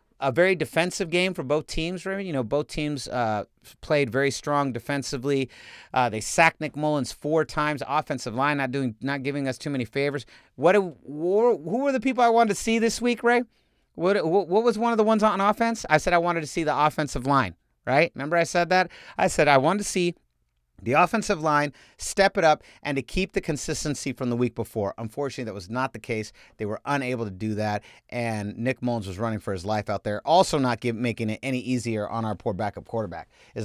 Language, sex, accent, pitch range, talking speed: English, male, American, 115-170 Hz, 225 wpm